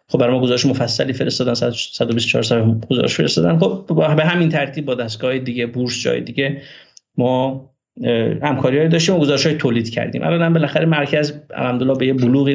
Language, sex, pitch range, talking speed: Persian, male, 120-140 Hz, 175 wpm